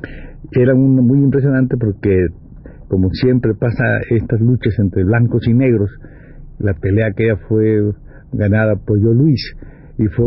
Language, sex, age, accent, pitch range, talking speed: Spanish, male, 60-79, Mexican, 110-140 Hz, 145 wpm